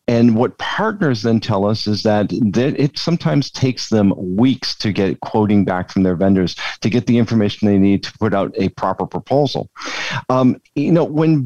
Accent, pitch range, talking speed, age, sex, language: American, 95-125 Hz, 190 wpm, 50-69, male, English